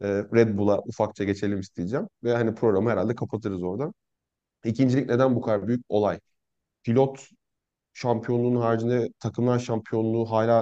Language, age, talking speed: Turkish, 30-49, 130 wpm